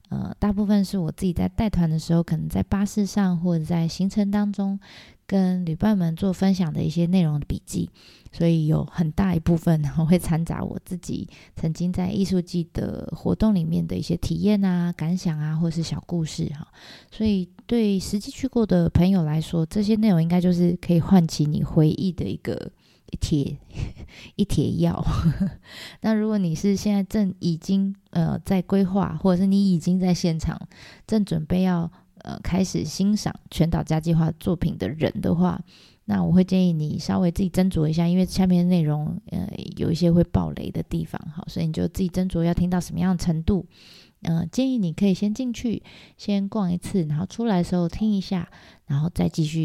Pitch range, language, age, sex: 165-195 Hz, Chinese, 20-39, female